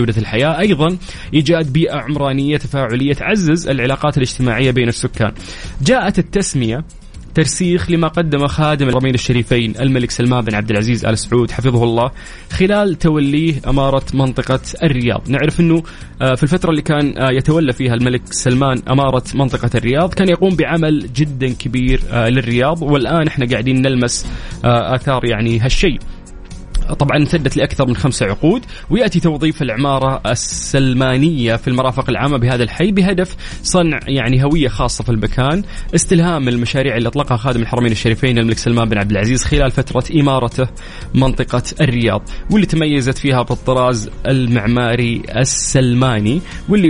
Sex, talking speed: male, 135 wpm